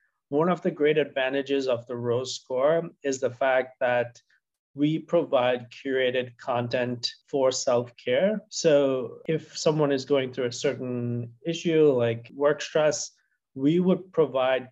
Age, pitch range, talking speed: 30-49, 125-145 Hz, 140 wpm